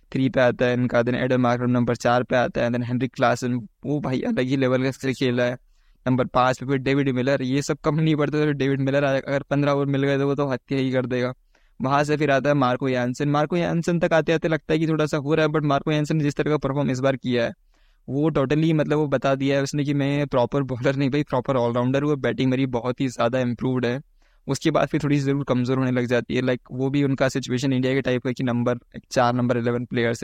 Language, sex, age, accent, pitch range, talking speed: Hindi, male, 20-39, native, 125-140 Hz, 245 wpm